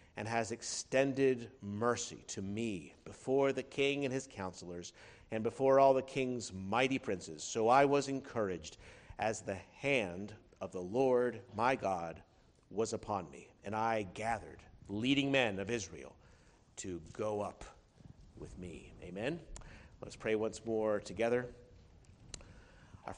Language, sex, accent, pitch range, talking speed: English, male, American, 105-135 Hz, 135 wpm